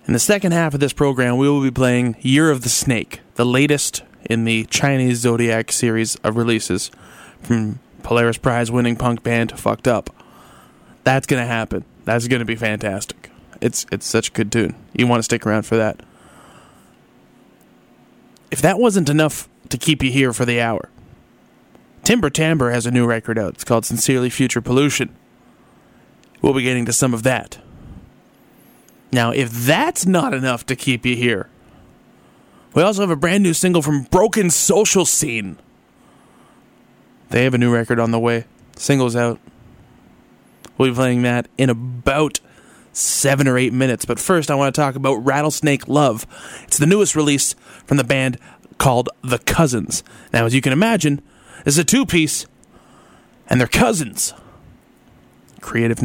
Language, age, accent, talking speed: English, 20-39, American, 165 wpm